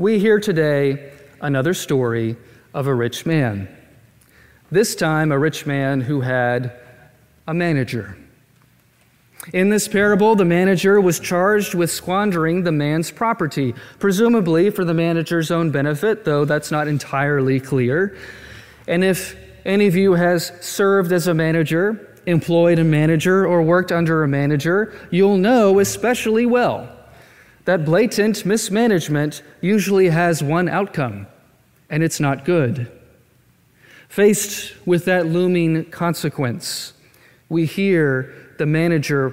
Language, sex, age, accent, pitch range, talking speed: English, male, 30-49, American, 140-185 Hz, 125 wpm